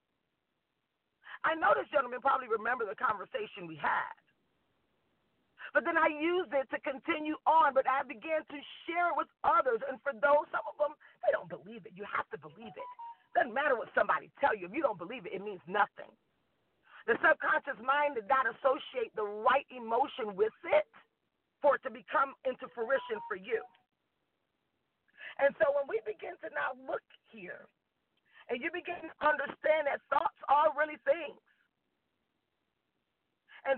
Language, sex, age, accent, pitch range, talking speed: English, female, 40-59, American, 270-335 Hz, 165 wpm